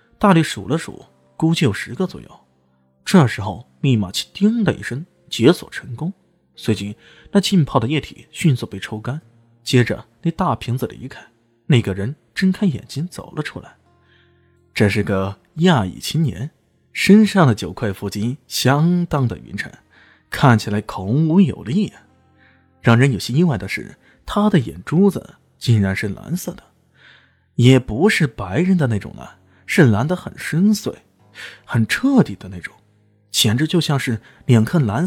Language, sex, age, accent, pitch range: Chinese, male, 20-39, native, 100-165 Hz